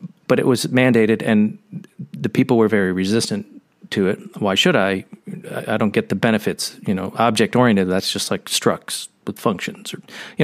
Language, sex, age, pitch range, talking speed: English, male, 40-59, 105-130 Hz, 180 wpm